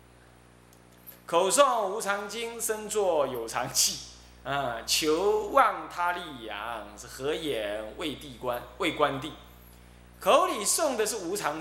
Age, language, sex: 20-39, Chinese, male